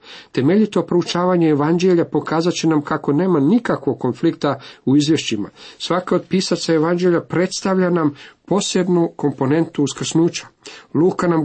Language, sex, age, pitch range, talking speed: Croatian, male, 50-69, 120-160 Hz, 120 wpm